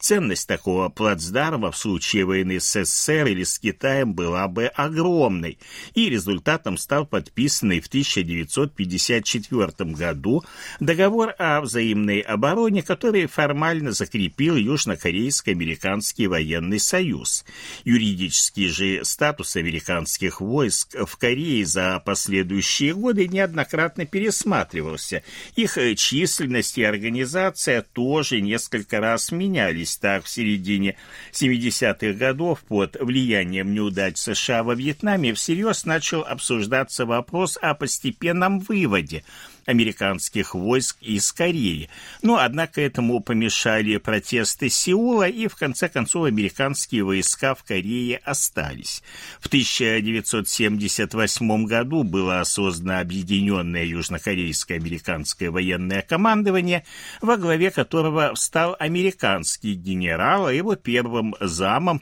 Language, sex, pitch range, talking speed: Russian, male, 95-155 Hz, 105 wpm